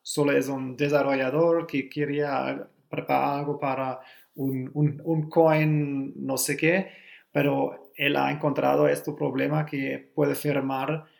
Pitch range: 130-155 Hz